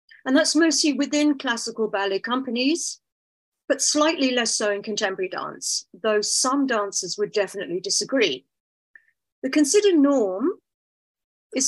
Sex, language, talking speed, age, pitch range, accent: female, English, 125 wpm, 50-69, 210-295 Hz, British